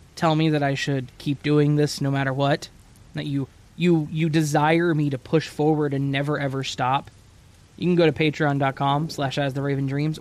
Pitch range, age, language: 135-165 Hz, 20-39, English